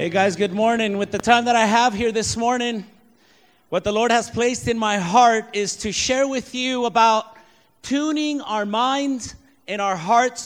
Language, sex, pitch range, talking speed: English, male, 195-250 Hz, 190 wpm